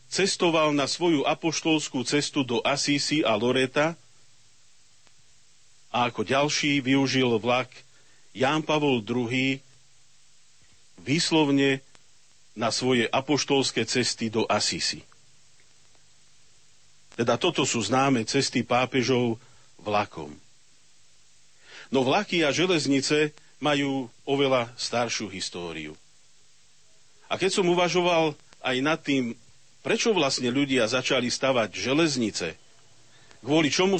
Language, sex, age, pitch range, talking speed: Slovak, male, 40-59, 125-155 Hz, 95 wpm